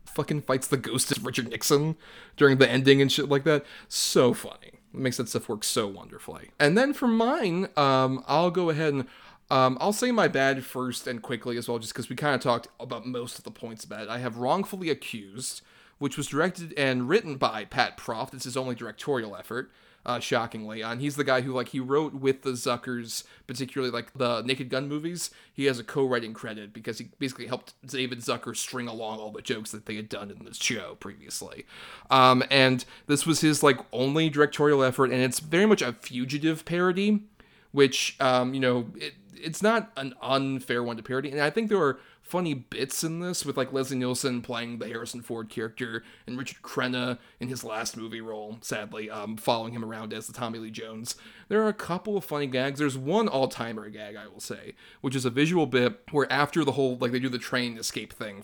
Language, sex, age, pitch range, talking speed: English, male, 30-49, 120-145 Hz, 215 wpm